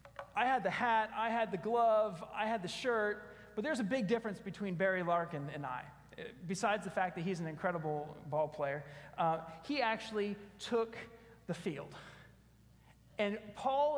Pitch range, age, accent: 165-220 Hz, 30-49, American